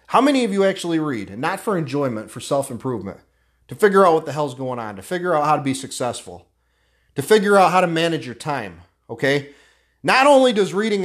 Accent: American